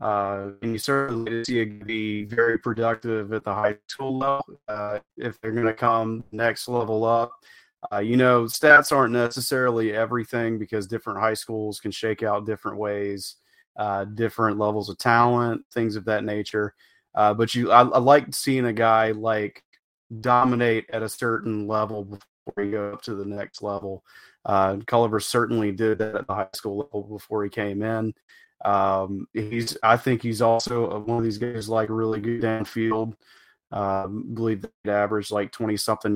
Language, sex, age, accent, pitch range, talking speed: English, male, 30-49, American, 105-115 Hz, 175 wpm